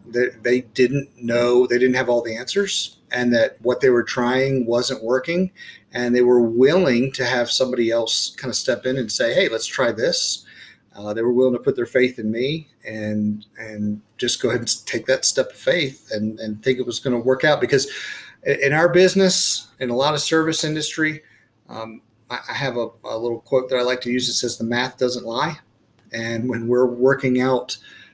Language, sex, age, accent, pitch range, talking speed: English, male, 30-49, American, 120-140 Hz, 215 wpm